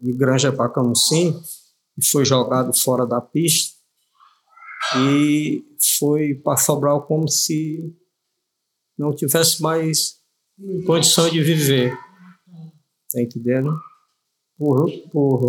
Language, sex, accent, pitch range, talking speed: Portuguese, male, Brazilian, 135-165 Hz, 110 wpm